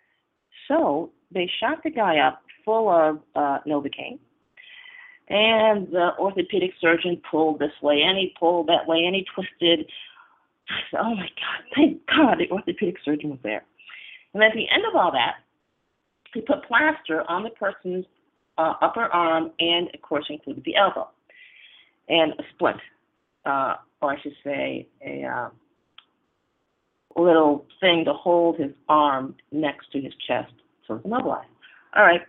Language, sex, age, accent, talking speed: English, female, 40-59, American, 155 wpm